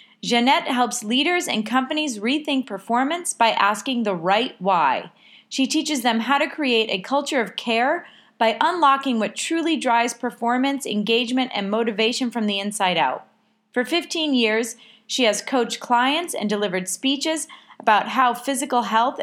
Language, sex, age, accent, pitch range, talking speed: English, female, 30-49, American, 215-275 Hz, 155 wpm